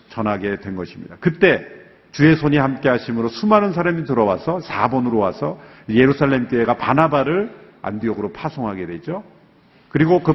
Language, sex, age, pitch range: Korean, male, 50-69, 115-185 Hz